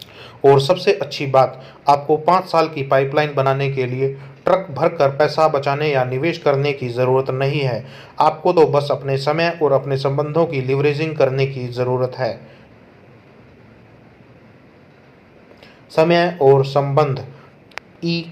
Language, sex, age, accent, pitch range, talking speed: Hindi, male, 30-49, native, 135-155 Hz, 135 wpm